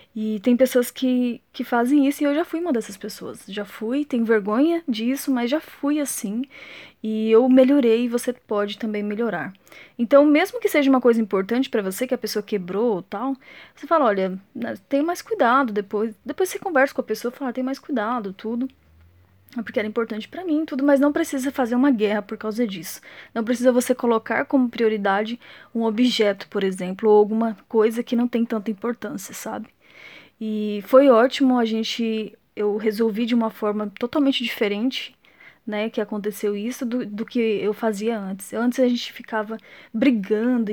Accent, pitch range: Brazilian, 215-260 Hz